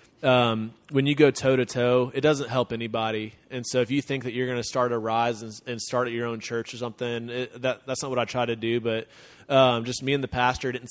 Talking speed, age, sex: 270 wpm, 20-39, male